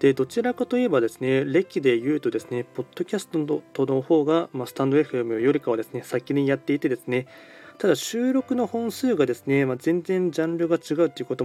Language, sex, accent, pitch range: Japanese, male, native, 120-150 Hz